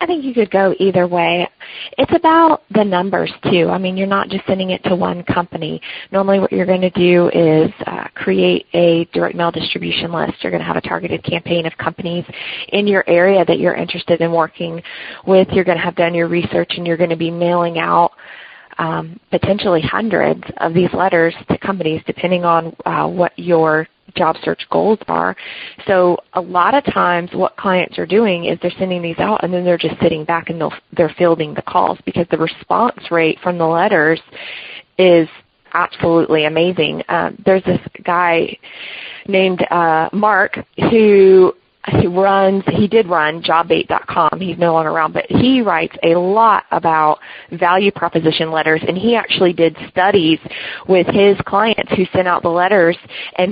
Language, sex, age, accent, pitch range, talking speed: English, female, 20-39, American, 165-190 Hz, 180 wpm